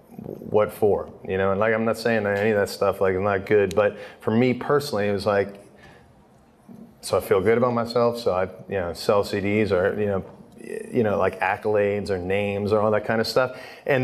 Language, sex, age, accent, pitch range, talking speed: English, male, 30-49, American, 105-135 Hz, 220 wpm